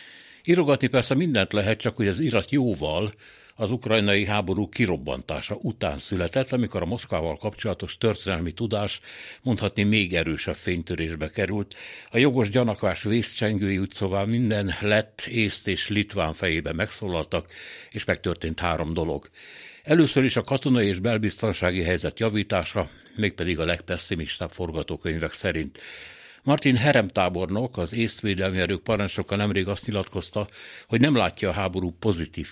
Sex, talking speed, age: male, 130 wpm, 60-79